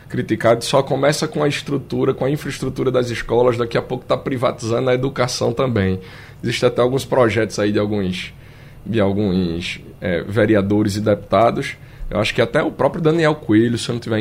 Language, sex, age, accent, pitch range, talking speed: Portuguese, male, 20-39, Brazilian, 115-135 Hz, 185 wpm